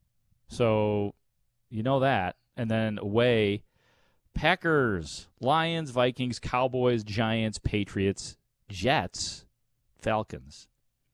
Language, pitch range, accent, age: English, 105-140 Hz, American, 30-49